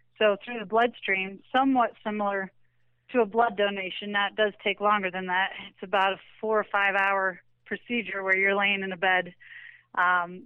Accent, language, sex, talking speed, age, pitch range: American, English, female, 180 wpm, 30-49, 195-230 Hz